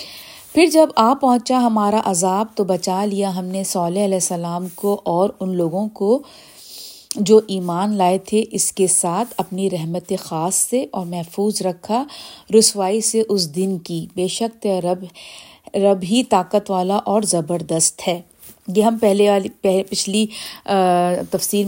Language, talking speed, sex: Urdu, 155 wpm, female